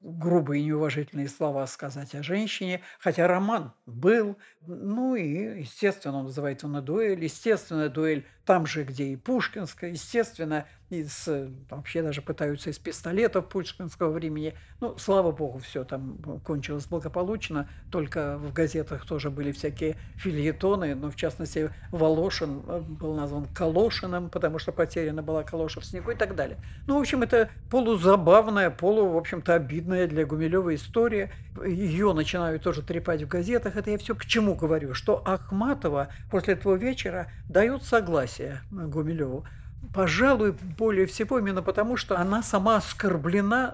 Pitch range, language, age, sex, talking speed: 150-195 Hz, Russian, 60-79, male, 145 wpm